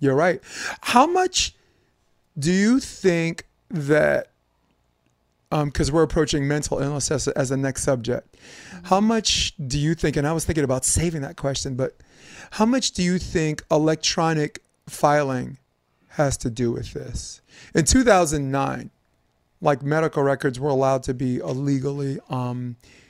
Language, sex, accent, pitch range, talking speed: English, male, American, 130-165 Hz, 145 wpm